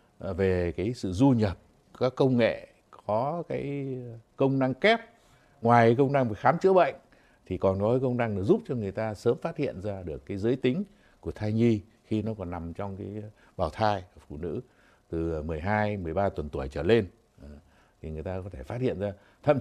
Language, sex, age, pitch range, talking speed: Vietnamese, male, 60-79, 95-130 Hz, 210 wpm